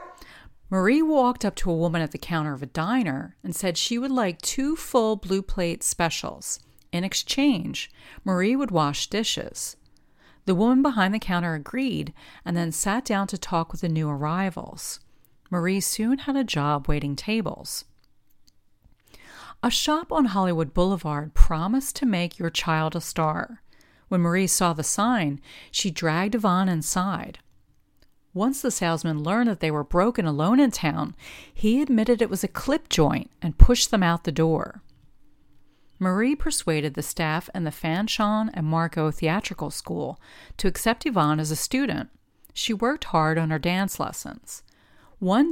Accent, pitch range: American, 160-225 Hz